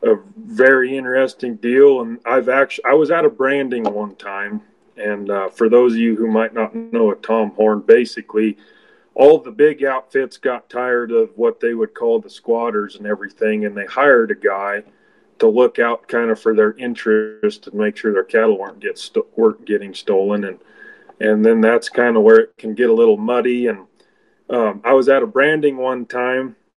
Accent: American